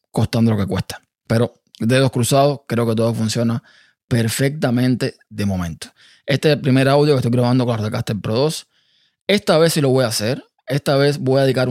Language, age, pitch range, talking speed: Spanish, 20-39, 115-135 Hz, 200 wpm